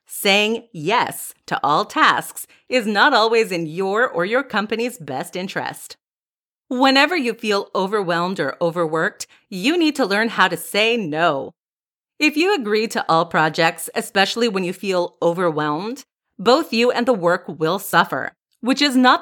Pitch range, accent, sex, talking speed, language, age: 180-260 Hz, American, female, 155 wpm, English, 30-49